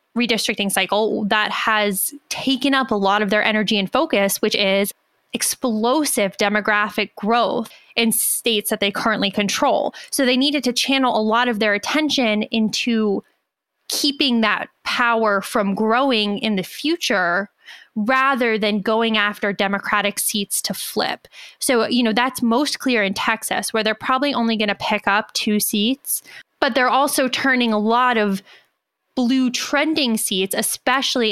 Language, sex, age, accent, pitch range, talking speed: English, female, 10-29, American, 205-250 Hz, 155 wpm